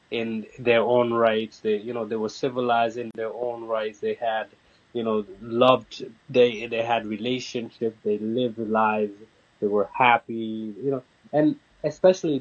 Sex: male